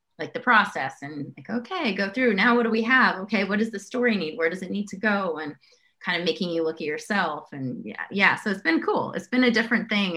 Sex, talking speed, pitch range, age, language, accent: female, 265 wpm, 155-215 Hz, 30-49, English, American